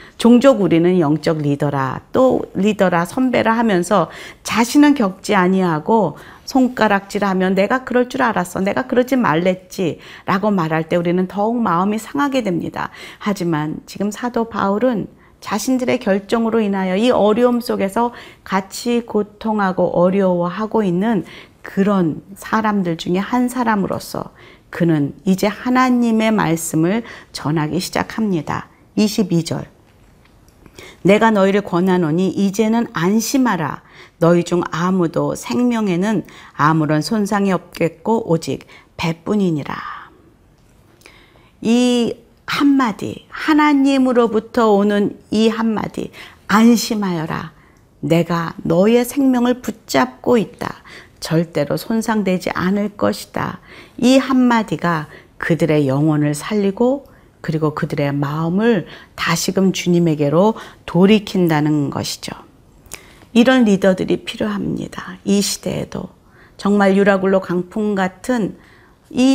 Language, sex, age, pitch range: Korean, female, 40-59, 175-230 Hz